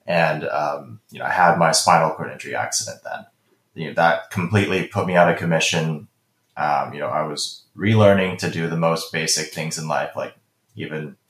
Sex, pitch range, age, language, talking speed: male, 80-95 Hz, 20-39, English, 195 wpm